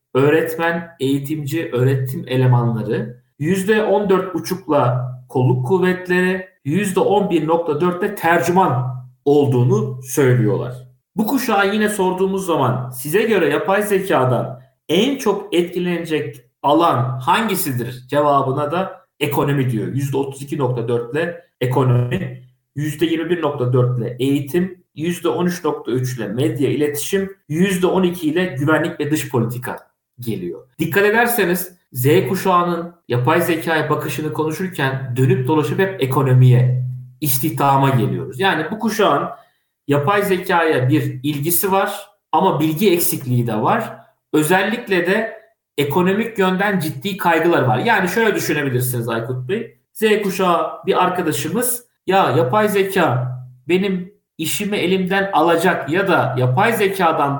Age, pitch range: 50-69, 135-185 Hz